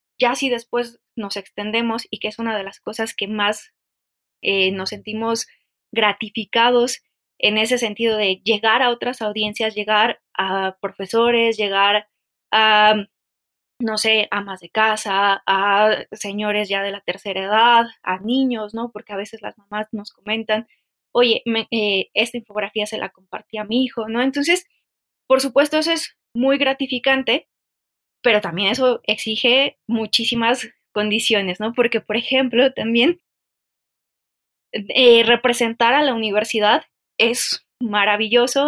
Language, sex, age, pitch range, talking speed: Spanish, female, 20-39, 210-245 Hz, 140 wpm